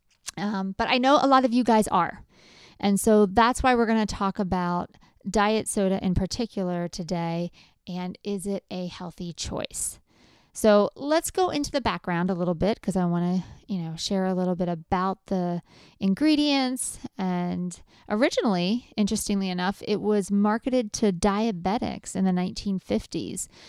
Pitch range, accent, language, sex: 180-225 Hz, American, English, female